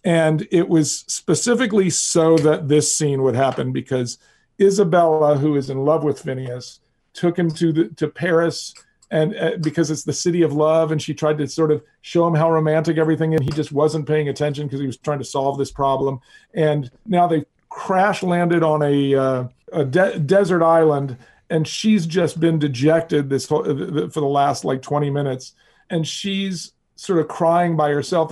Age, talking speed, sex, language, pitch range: 40-59, 190 wpm, male, English, 150-190 Hz